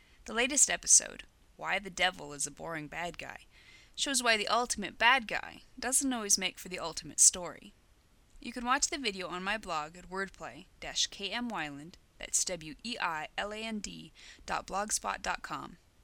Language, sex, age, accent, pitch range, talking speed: English, female, 20-39, American, 170-235 Hz, 125 wpm